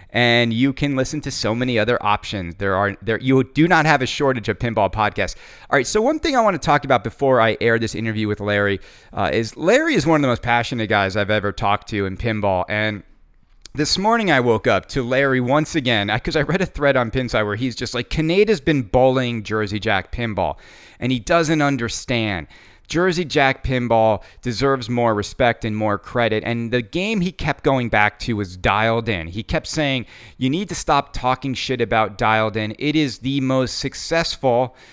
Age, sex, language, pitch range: 30-49, male, English, 110-140 Hz